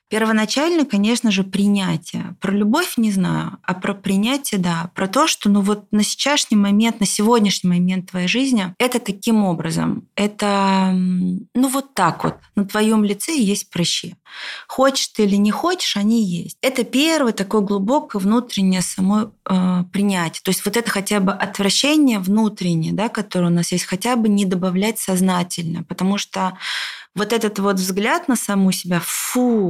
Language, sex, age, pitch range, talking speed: Russian, female, 30-49, 185-225 Hz, 160 wpm